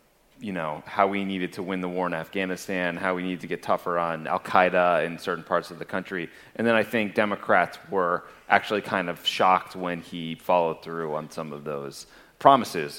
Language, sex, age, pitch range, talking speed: English, male, 30-49, 85-100 Hz, 205 wpm